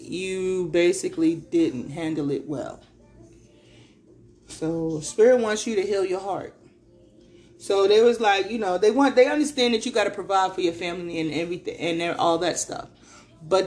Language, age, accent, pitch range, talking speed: English, 30-49, American, 170-230 Hz, 170 wpm